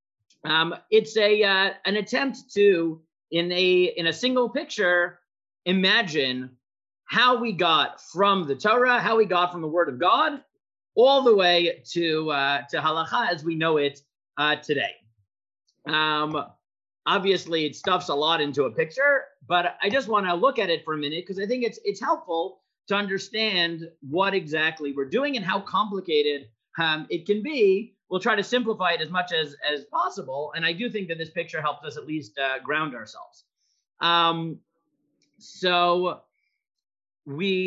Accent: American